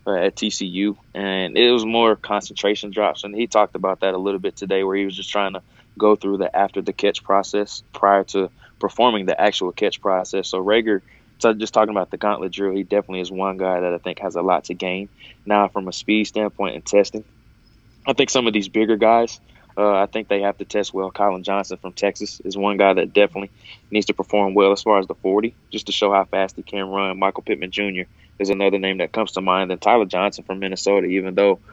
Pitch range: 95-105 Hz